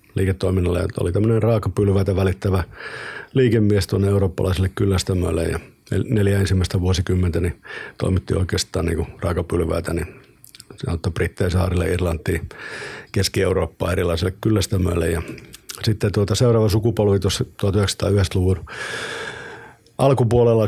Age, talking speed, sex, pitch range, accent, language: 50-69, 95 wpm, male, 90-105 Hz, native, Finnish